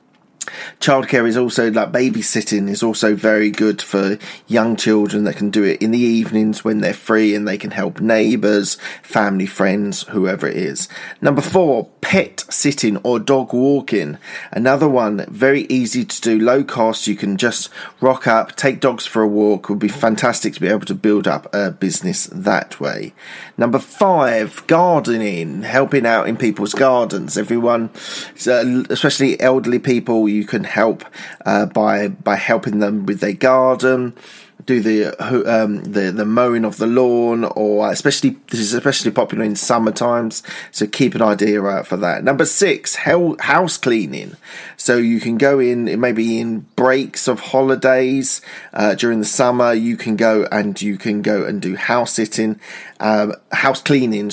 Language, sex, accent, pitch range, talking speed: English, male, British, 105-125 Hz, 165 wpm